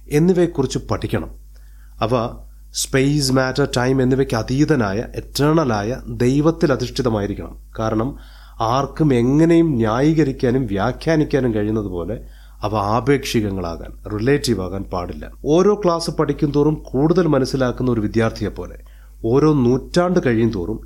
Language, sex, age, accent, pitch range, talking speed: Malayalam, male, 30-49, native, 110-150 Hz, 95 wpm